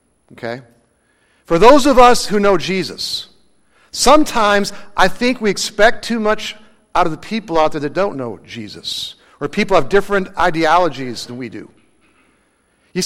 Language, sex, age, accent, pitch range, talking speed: English, male, 50-69, American, 160-210 Hz, 155 wpm